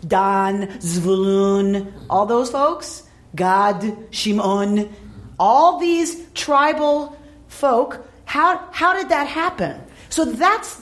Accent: American